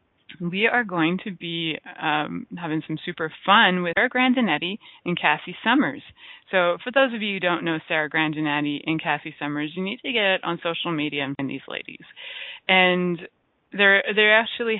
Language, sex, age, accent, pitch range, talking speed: English, female, 20-39, American, 160-215 Hz, 185 wpm